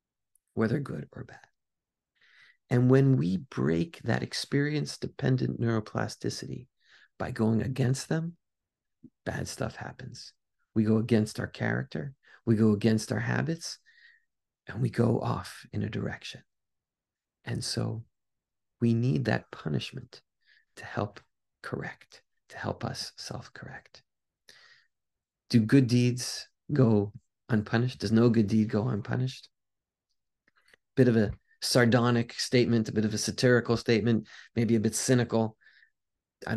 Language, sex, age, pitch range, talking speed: English, male, 40-59, 110-130 Hz, 125 wpm